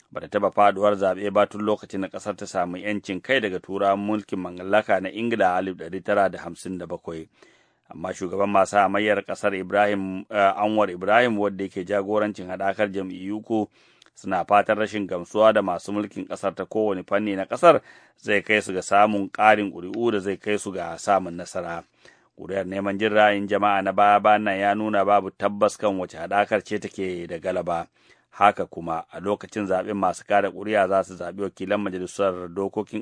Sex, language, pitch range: male, English, 95-105 Hz